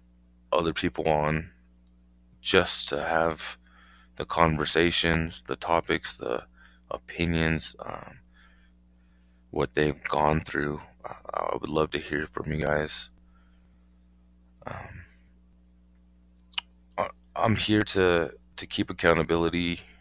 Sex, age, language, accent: male, 20-39, English, American